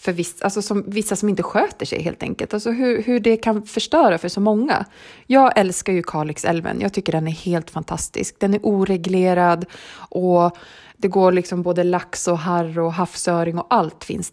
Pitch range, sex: 175-230 Hz, female